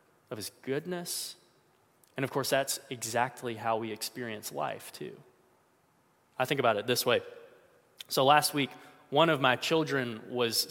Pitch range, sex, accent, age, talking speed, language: 130-170 Hz, male, American, 20-39, 150 wpm, English